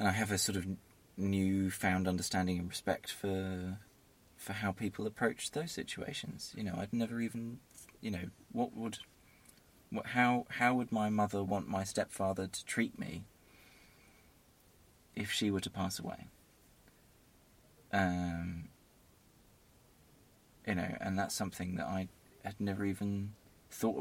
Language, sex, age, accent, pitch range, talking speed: English, male, 20-39, British, 90-105 Hz, 140 wpm